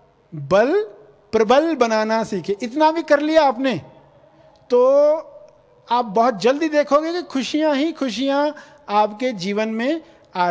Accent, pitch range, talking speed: native, 195-270 Hz, 125 wpm